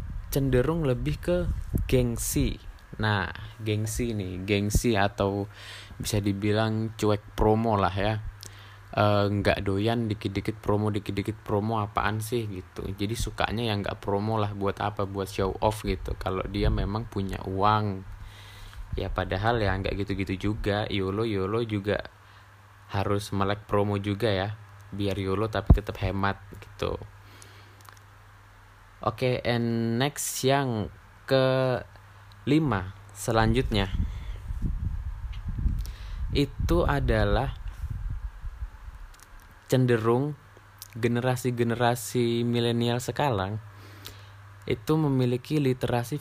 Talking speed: 100 wpm